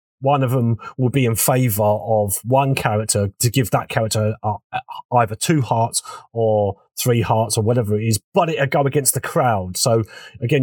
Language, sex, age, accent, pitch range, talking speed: English, male, 30-49, British, 110-140 Hz, 180 wpm